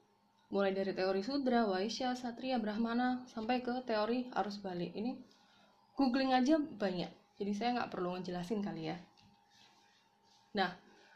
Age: 20-39